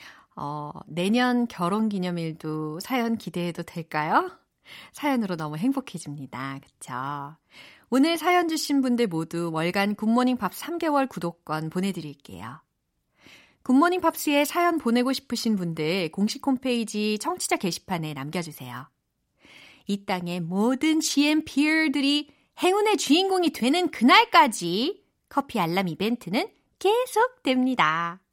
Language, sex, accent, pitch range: Korean, female, native, 175-275 Hz